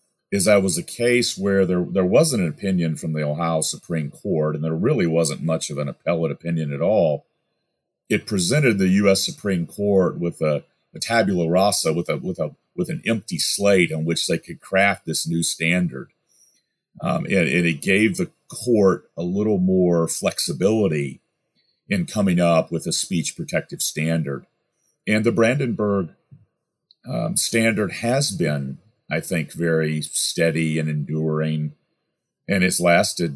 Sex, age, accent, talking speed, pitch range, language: male, 40-59, American, 160 wpm, 80-100 Hz, English